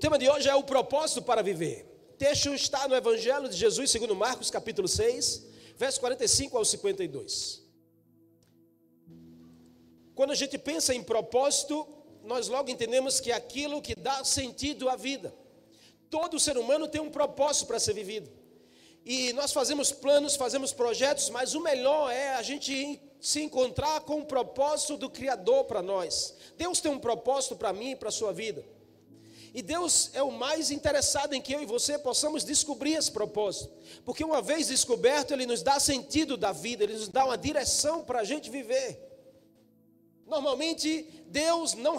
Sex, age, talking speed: male, 40-59, 170 wpm